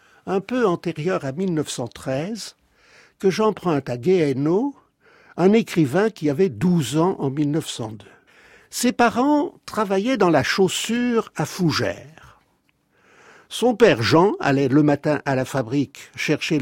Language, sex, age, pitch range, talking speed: French, male, 60-79, 140-205 Hz, 125 wpm